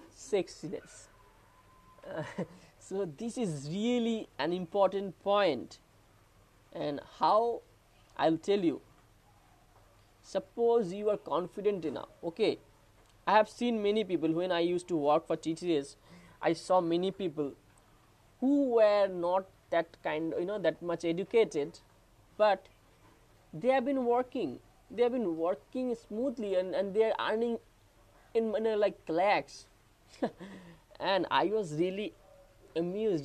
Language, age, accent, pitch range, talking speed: English, 20-39, Indian, 150-210 Hz, 125 wpm